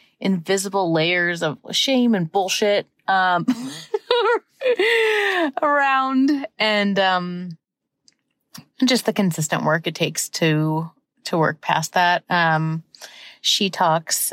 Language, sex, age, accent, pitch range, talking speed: English, female, 30-49, American, 175-225 Hz, 95 wpm